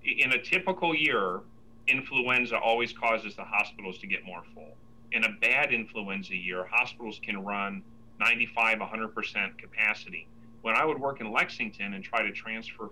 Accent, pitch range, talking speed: American, 110-120 Hz, 160 wpm